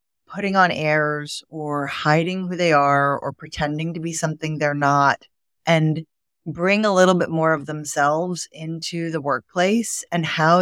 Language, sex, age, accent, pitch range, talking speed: English, female, 30-49, American, 150-175 Hz, 160 wpm